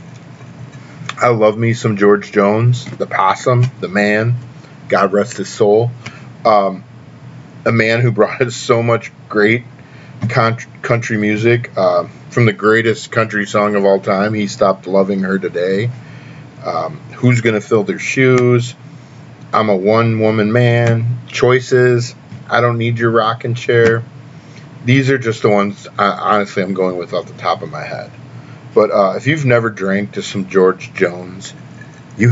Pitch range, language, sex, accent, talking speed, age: 105-130 Hz, English, male, American, 160 wpm, 40-59